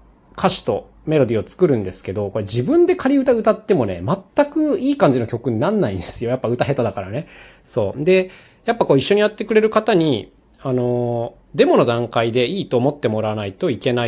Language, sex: Japanese, male